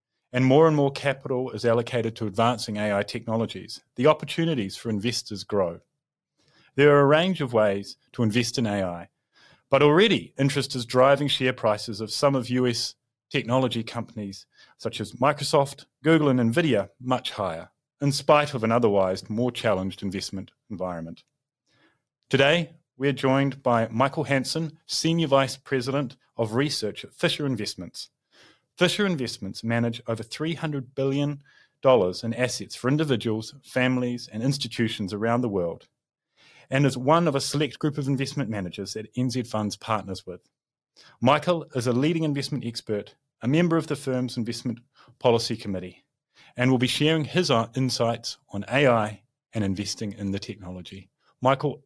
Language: English